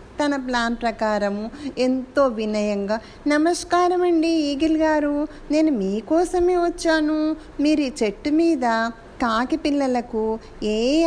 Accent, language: native, Telugu